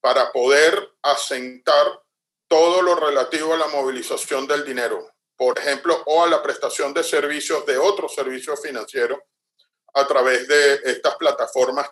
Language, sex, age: Spanish, male, 40-59